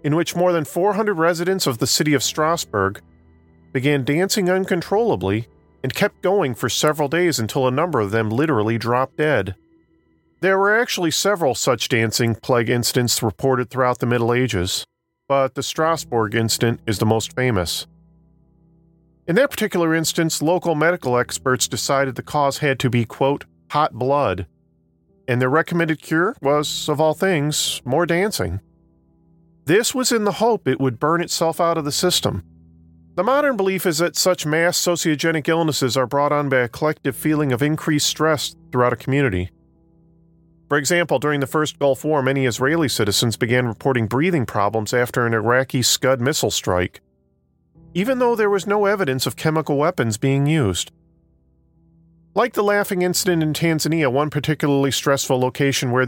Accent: American